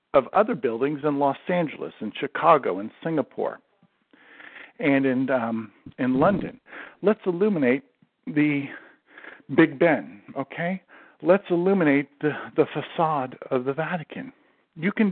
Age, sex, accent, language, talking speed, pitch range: 50-69, male, American, English, 125 wpm, 130-180 Hz